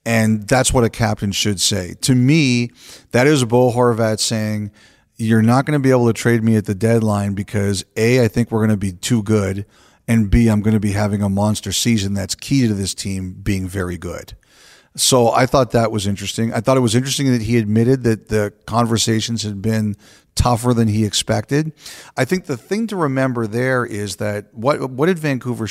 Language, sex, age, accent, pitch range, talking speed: English, male, 40-59, American, 105-125 Hz, 210 wpm